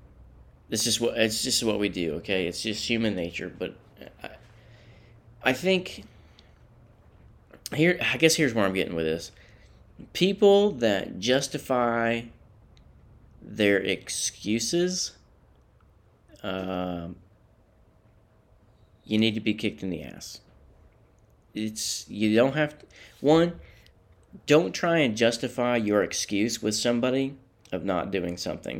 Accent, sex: American, male